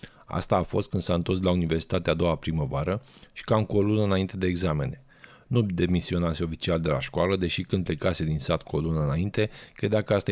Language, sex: Romanian, male